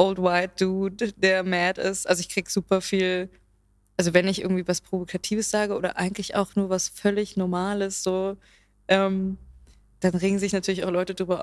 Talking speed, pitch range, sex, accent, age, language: 180 wpm, 180-200 Hz, female, German, 20-39, German